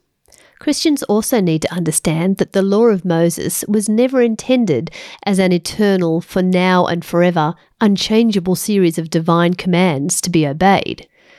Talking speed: 150 wpm